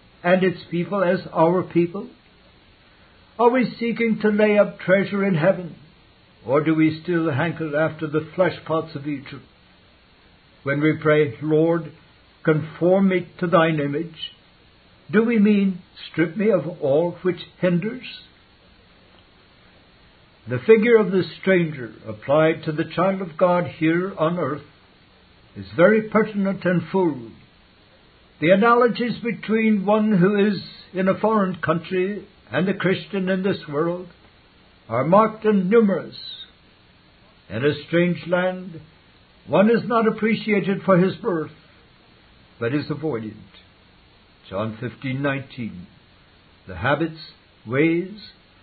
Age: 60-79